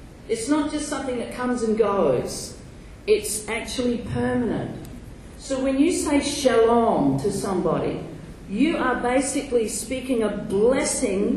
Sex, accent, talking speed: female, Australian, 125 wpm